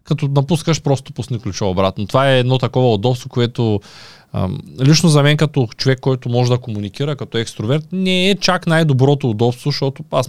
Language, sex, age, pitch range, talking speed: Bulgarian, male, 20-39, 115-160 Hz, 180 wpm